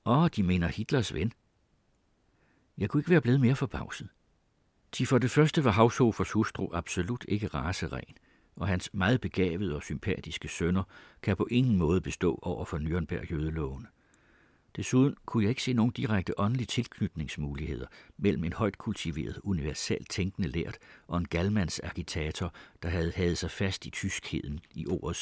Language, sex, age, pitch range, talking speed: Danish, male, 60-79, 85-110 Hz, 160 wpm